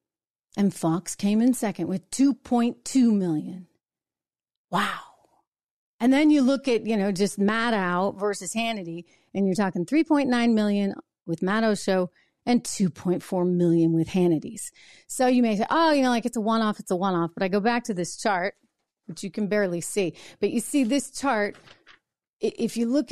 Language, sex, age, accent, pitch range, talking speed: English, female, 40-59, American, 195-255 Hz, 180 wpm